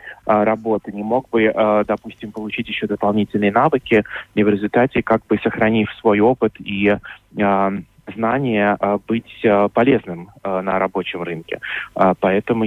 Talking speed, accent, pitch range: 120 wpm, native, 100-115 Hz